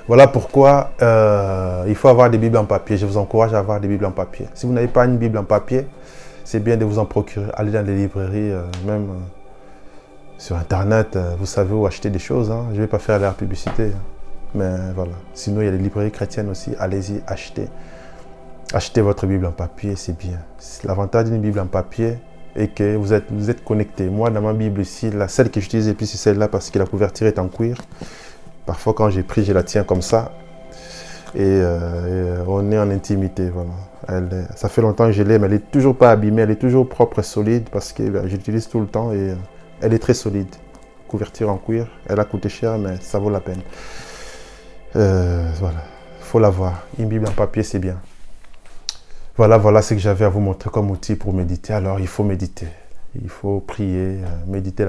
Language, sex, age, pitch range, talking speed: French, male, 20-39, 95-110 Hz, 225 wpm